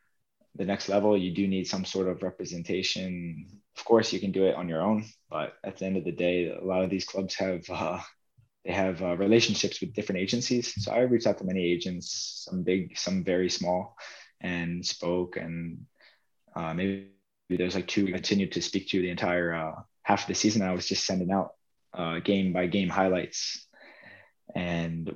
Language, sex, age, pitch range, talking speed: Swedish, male, 20-39, 90-105 Hz, 195 wpm